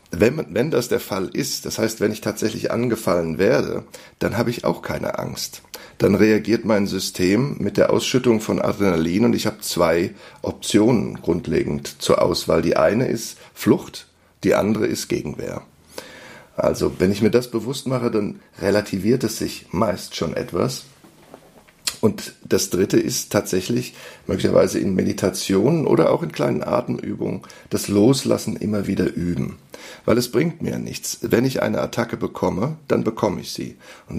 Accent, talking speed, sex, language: German, 160 wpm, male, German